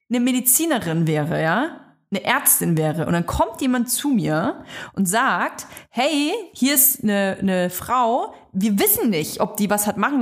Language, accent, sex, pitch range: German, German, female, 200-275 Hz